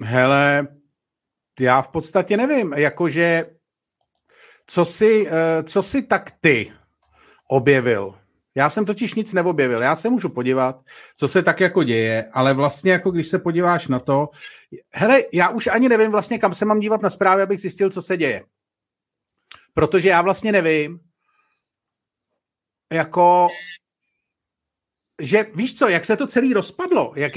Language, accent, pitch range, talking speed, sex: Czech, native, 160-215 Hz, 145 wpm, male